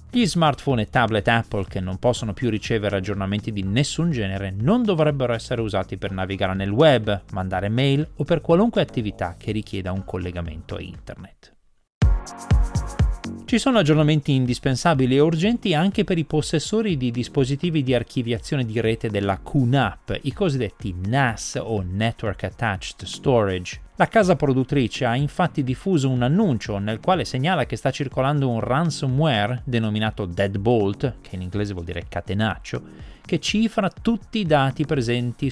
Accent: native